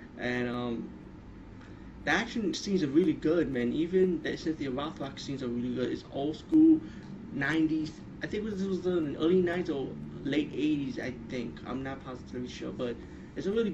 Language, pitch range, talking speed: English, 130-160 Hz, 180 wpm